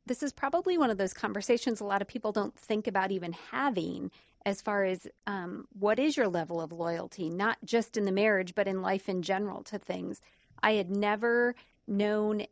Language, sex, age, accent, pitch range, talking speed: English, female, 40-59, American, 180-215 Hz, 200 wpm